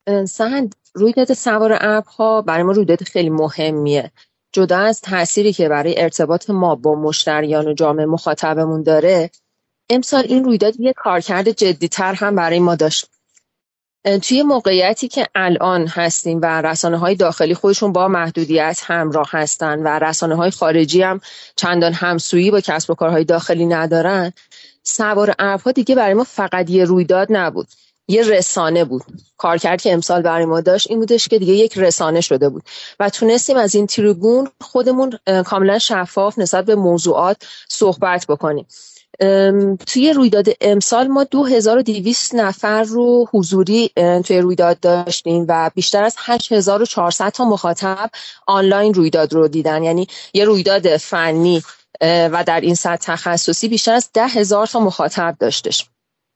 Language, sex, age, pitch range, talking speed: Persian, female, 30-49, 170-215 Hz, 145 wpm